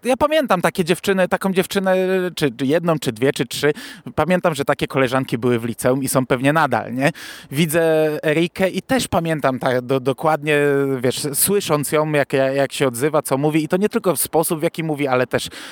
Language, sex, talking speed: Polish, male, 200 wpm